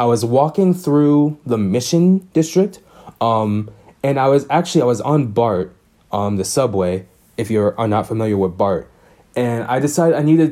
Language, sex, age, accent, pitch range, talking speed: English, male, 20-39, American, 105-150 Hz, 175 wpm